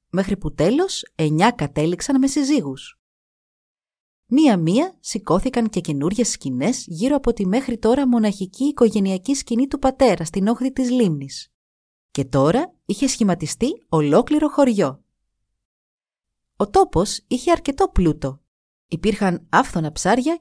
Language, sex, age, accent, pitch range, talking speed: Greek, female, 30-49, native, 165-250 Hz, 120 wpm